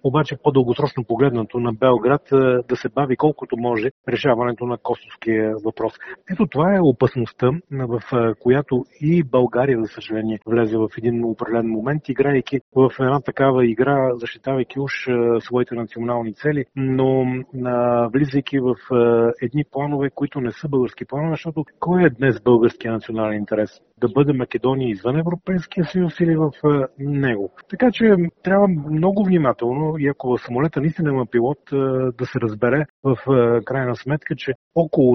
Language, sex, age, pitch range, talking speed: Bulgarian, male, 40-59, 120-150 Hz, 145 wpm